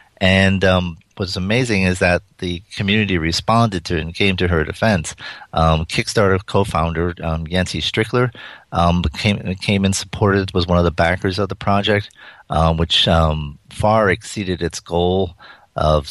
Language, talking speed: English, 160 wpm